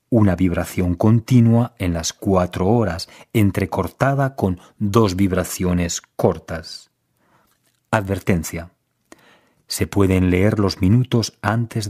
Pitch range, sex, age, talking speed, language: 90-115 Hz, male, 40-59, 95 wpm, Arabic